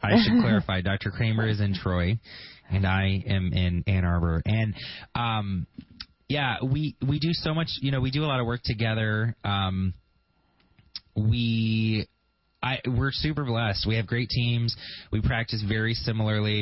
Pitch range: 100-120 Hz